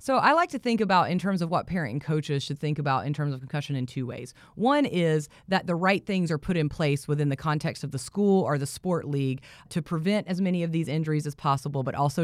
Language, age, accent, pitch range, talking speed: English, 30-49, American, 145-195 Hz, 265 wpm